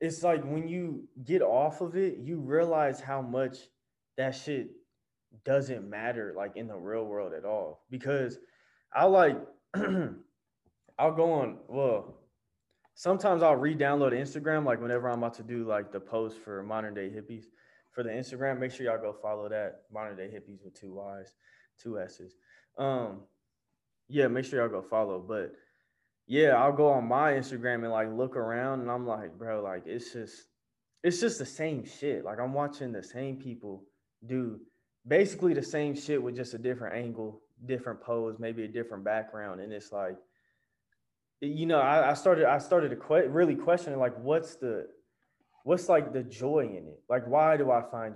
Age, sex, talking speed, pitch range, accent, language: 20-39, male, 180 wpm, 110-145 Hz, American, English